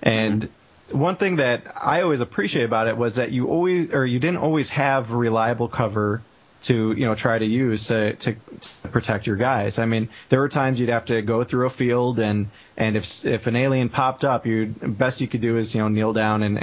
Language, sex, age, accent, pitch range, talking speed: English, male, 30-49, American, 110-130 Hz, 225 wpm